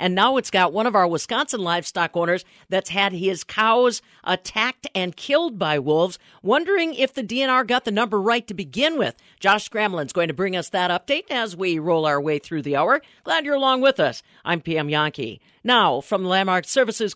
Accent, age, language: American, 50-69, English